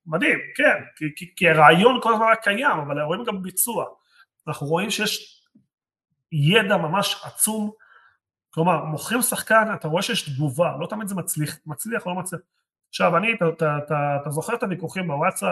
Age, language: 30-49, Hebrew